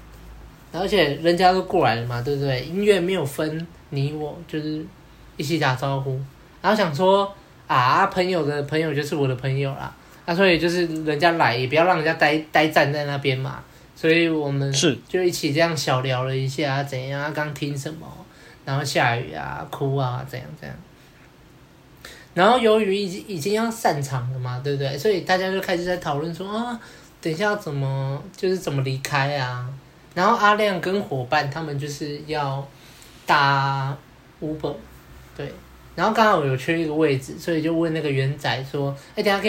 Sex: male